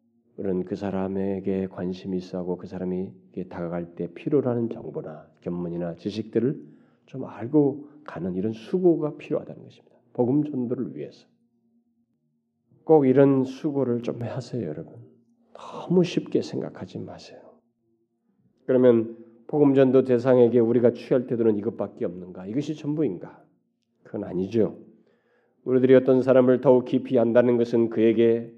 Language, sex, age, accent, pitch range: Korean, male, 40-59, native, 115-190 Hz